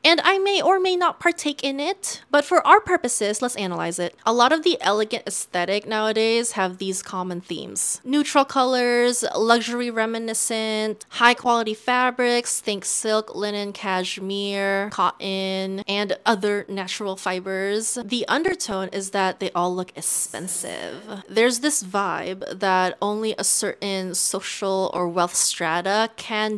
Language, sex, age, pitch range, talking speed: English, female, 20-39, 195-250 Hz, 140 wpm